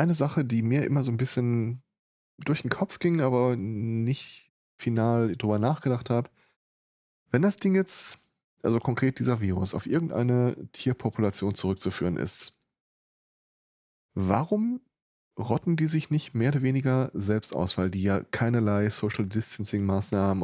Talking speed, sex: 140 wpm, male